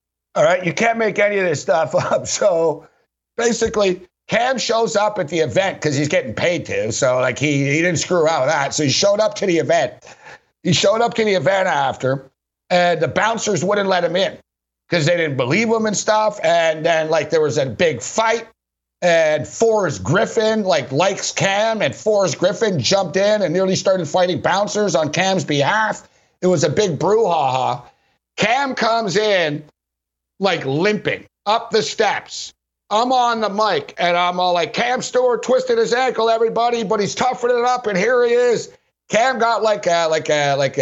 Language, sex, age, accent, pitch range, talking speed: English, male, 60-79, American, 160-220 Hz, 190 wpm